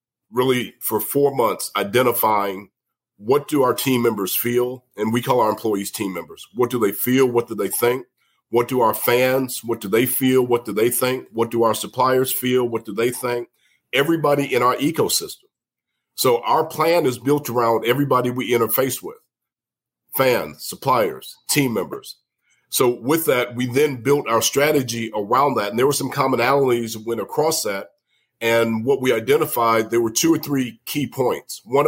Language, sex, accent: English, male, American